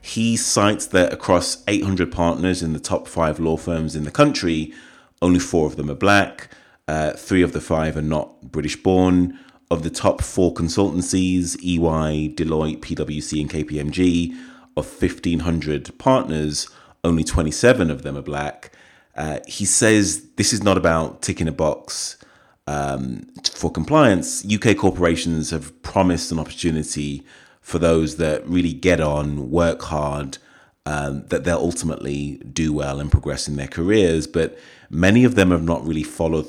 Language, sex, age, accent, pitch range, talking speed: English, male, 30-49, British, 75-90 Hz, 155 wpm